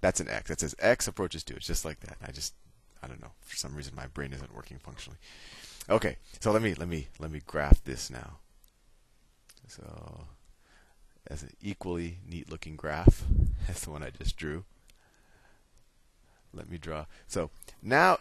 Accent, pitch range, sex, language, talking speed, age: American, 80-105 Hz, male, English, 180 wpm, 30-49